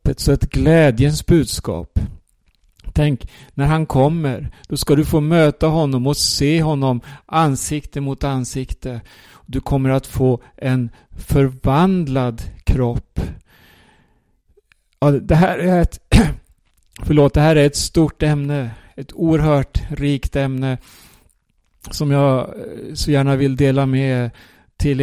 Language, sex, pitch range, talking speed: Swedish, male, 130-150 Hz, 125 wpm